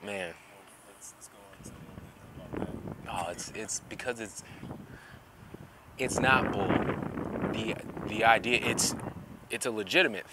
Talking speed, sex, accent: 95 wpm, male, American